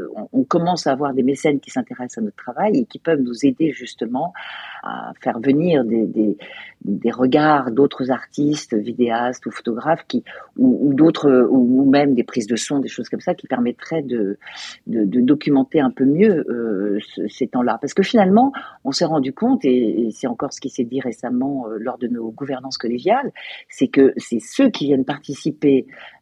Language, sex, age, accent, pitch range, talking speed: French, female, 50-69, French, 125-180 Hz, 195 wpm